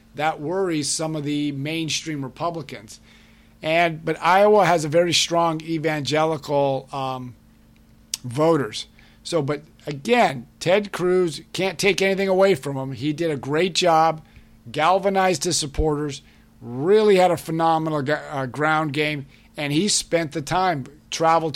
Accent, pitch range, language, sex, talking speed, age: American, 145-185 Hz, English, male, 135 wpm, 50-69